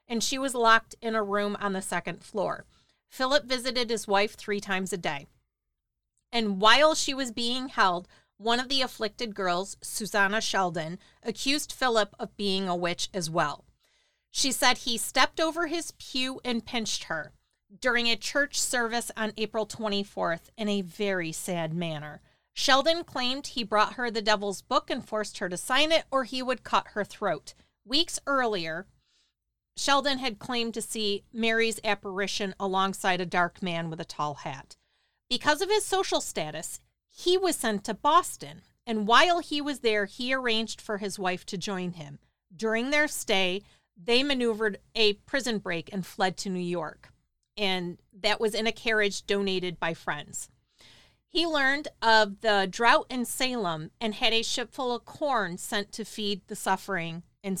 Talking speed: 170 wpm